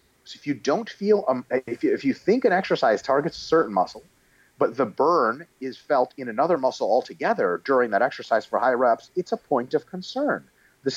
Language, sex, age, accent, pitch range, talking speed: German, male, 30-49, American, 130-190 Hz, 210 wpm